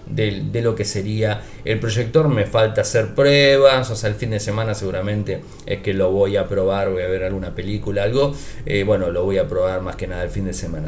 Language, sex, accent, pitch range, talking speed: Spanish, male, Argentinian, 105-140 Hz, 235 wpm